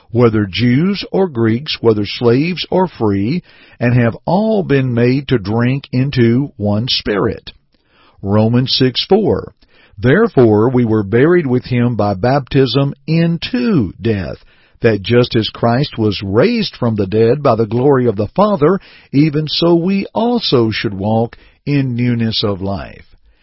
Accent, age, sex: American, 50-69, male